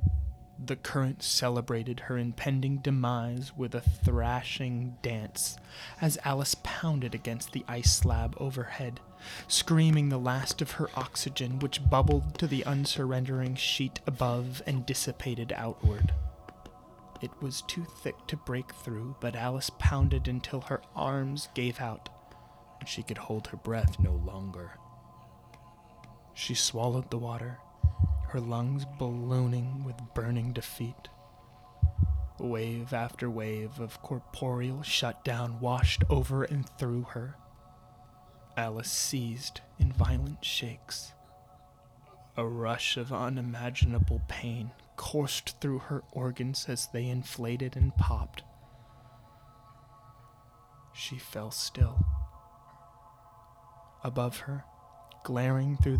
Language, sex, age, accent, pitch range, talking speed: English, male, 20-39, American, 110-135 Hz, 110 wpm